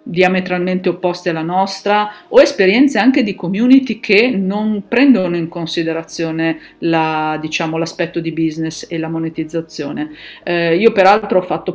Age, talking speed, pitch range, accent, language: 50-69, 140 wpm, 165-195 Hz, native, Italian